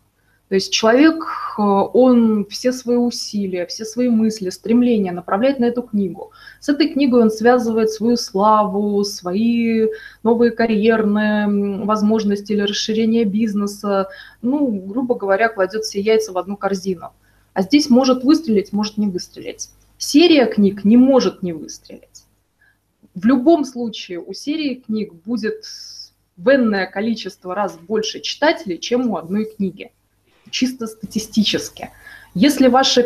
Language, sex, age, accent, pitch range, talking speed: Russian, female, 20-39, native, 195-250 Hz, 130 wpm